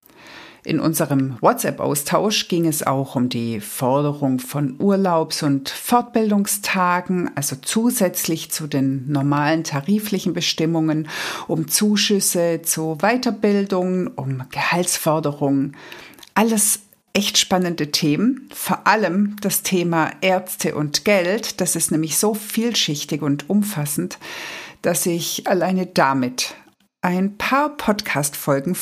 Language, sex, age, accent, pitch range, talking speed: German, female, 60-79, German, 150-200 Hz, 105 wpm